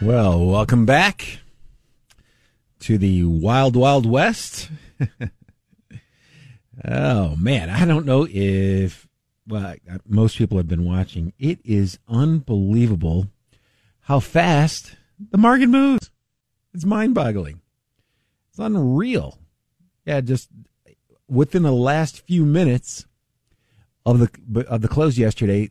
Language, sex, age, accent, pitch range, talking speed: English, male, 50-69, American, 100-140 Hz, 110 wpm